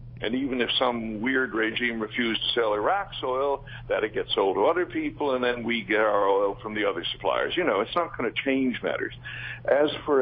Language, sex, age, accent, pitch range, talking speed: English, male, 60-79, American, 120-160 Hz, 225 wpm